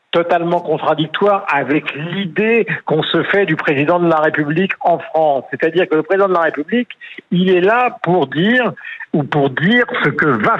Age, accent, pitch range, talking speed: 50-69, French, 155-200 Hz, 180 wpm